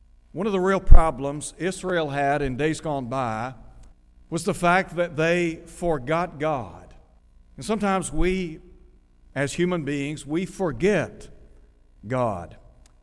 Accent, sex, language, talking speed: American, male, English, 125 wpm